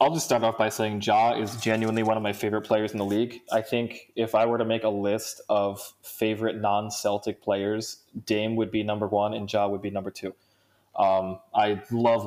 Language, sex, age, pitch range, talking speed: English, male, 20-39, 105-115 Hz, 215 wpm